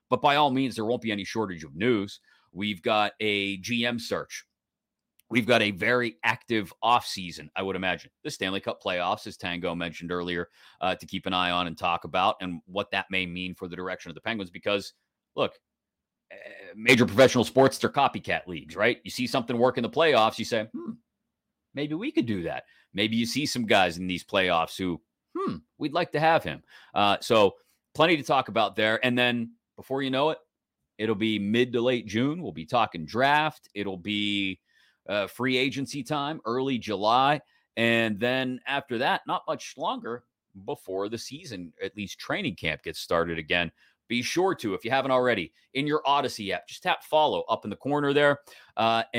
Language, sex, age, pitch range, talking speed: English, male, 30-49, 100-125 Hz, 195 wpm